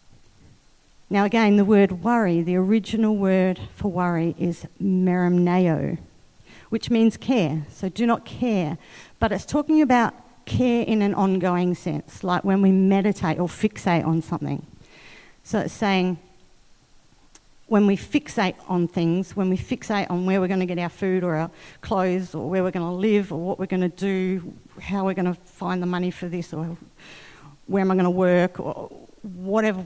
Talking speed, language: 175 wpm, English